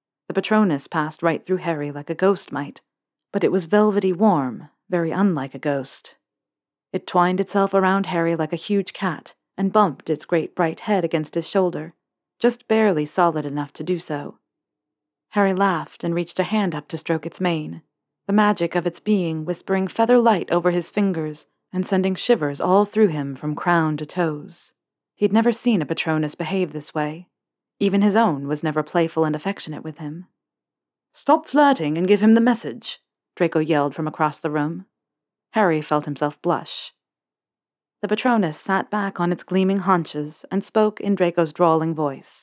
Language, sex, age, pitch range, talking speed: English, female, 40-59, 155-195 Hz, 175 wpm